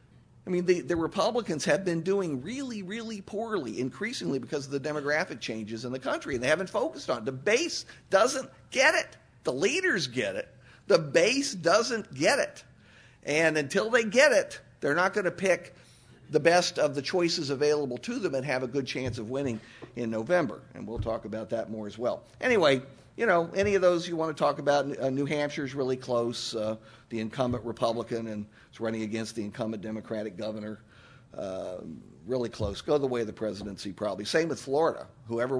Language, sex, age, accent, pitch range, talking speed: English, male, 50-69, American, 115-170 Hz, 195 wpm